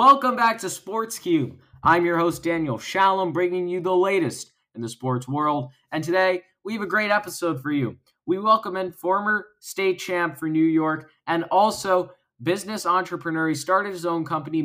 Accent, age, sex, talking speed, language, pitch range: American, 20-39, male, 180 wpm, English, 145-190 Hz